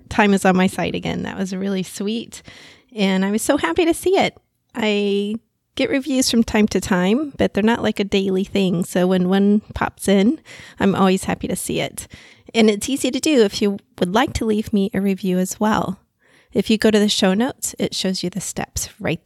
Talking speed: 225 wpm